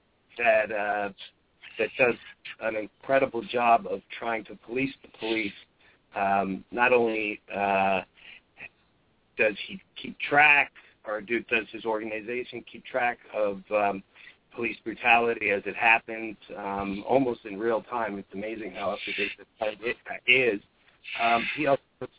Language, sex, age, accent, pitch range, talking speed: English, male, 40-59, American, 100-115 Hz, 140 wpm